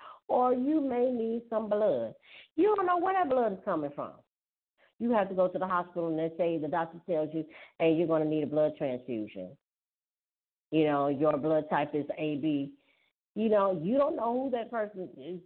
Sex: female